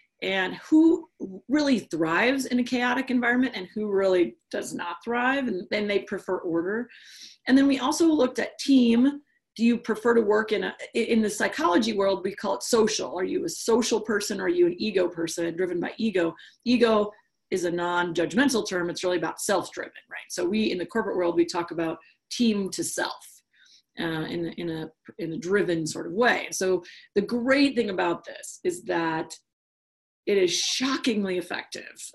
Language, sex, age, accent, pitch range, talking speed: English, female, 40-59, American, 175-250 Hz, 185 wpm